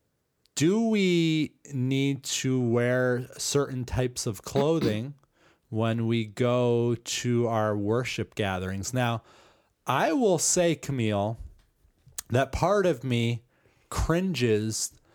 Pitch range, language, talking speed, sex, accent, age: 110-130 Hz, English, 105 wpm, male, American, 30-49